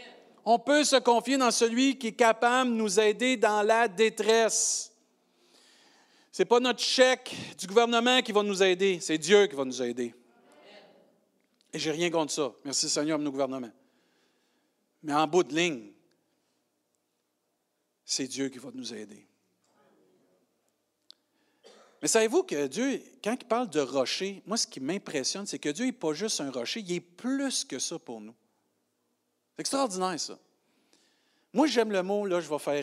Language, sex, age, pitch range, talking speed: French, male, 50-69, 135-225 Hz, 165 wpm